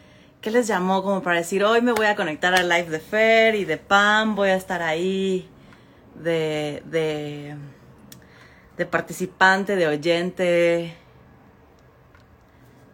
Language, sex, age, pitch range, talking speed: Spanish, female, 30-49, 150-205 Hz, 130 wpm